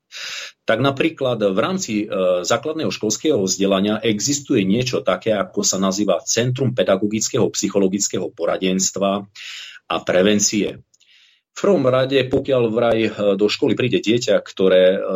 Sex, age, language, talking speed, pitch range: male, 40-59, Slovak, 115 wpm, 95-125 Hz